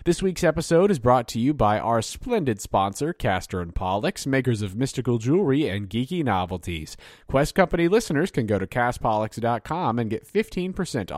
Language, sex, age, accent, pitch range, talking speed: English, male, 30-49, American, 105-160 Hz, 165 wpm